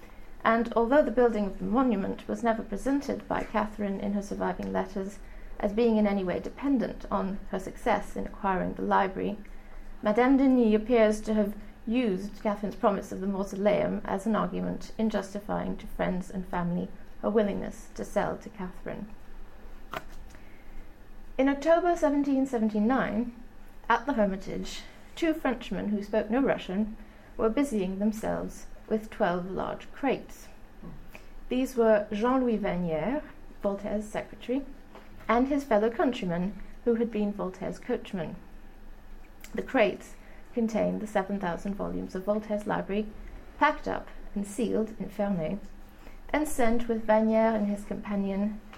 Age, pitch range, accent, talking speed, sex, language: 30-49, 200-235 Hz, British, 135 wpm, female, English